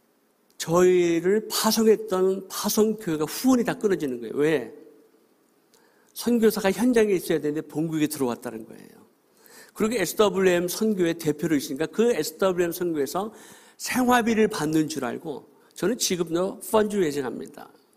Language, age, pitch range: Korean, 50-69, 165-215 Hz